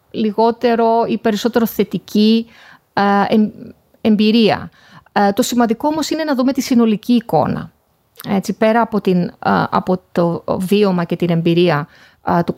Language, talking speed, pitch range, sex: Greek, 120 wpm, 190-250 Hz, female